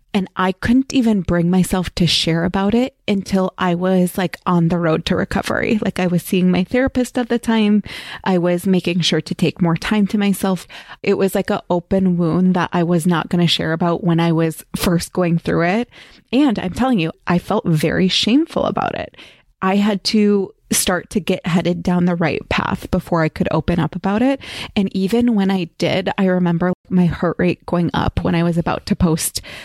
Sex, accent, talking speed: female, American, 215 wpm